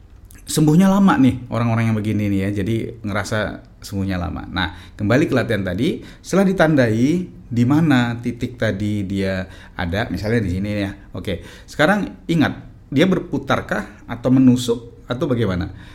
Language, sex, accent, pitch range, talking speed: Indonesian, male, native, 100-135 Hz, 140 wpm